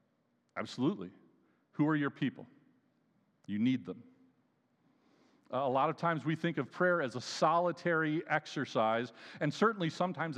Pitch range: 125-160 Hz